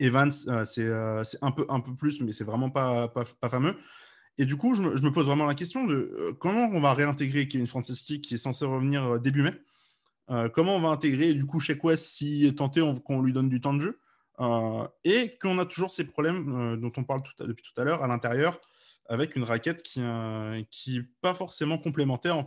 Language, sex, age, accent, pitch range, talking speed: French, male, 20-39, French, 120-155 Hz, 245 wpm